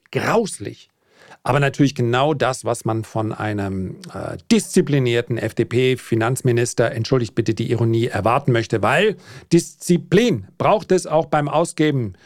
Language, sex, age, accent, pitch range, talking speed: German, male, 40-59, German, 120-155 Hz, 120 wpm